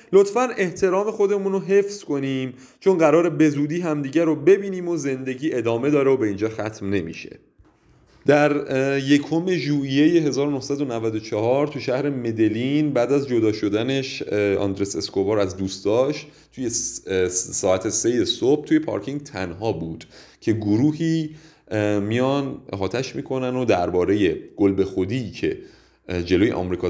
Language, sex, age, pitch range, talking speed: Persian, male, 30-49, 105-150 Hz, 125 wpm